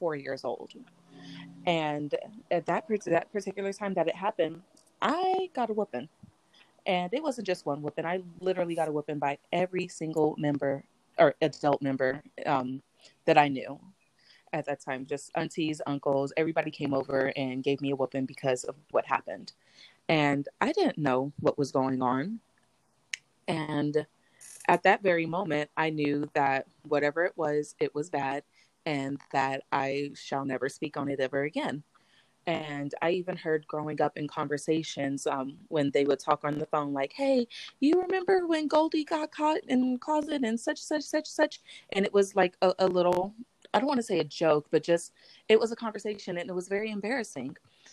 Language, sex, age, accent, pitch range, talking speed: English, female, 30-49, American, 145-190 Hz, 180 wpm